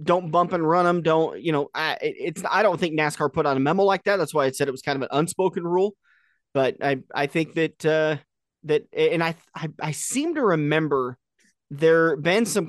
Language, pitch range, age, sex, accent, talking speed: English, 145-190 Hz, 30-49, male, American, 225 wpm